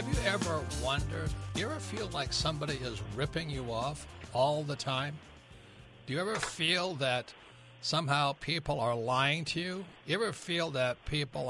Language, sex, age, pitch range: English, male, 60-79, 125-165 Hz